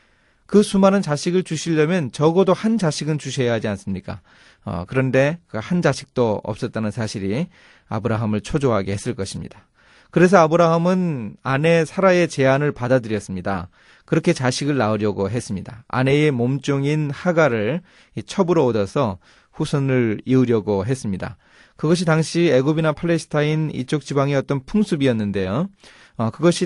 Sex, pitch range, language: male, 115-175 Hz, Korean